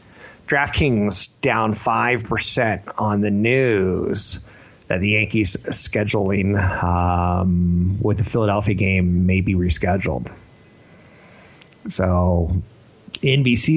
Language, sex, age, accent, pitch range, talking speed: English, male, 30-49, American, 95-130 Hz, 85 wpm